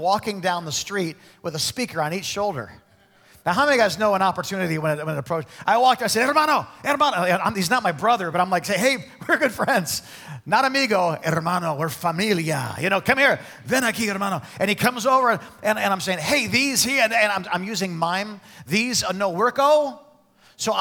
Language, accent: English, American